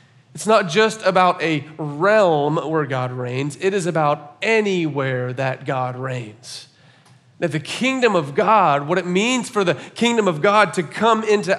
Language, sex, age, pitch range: English, male, 40-59, 140-185 Hz